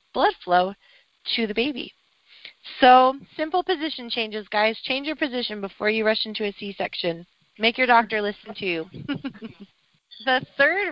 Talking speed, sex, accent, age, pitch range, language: 150 wpm, female, American, 30-49, 220-280 Hz, English